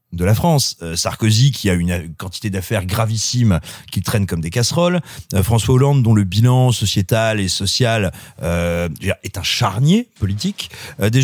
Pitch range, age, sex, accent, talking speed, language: 110-150 Hz, 30-49, male, French, 155 wpm, French